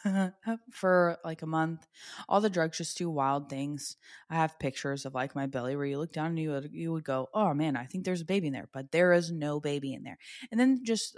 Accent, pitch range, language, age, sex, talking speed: American, 145-180 Hz, English, 20-39, female, 245 wpm